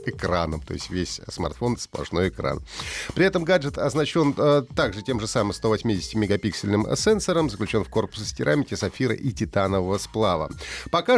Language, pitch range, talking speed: Russian, 110-145 Hz, 155 wpm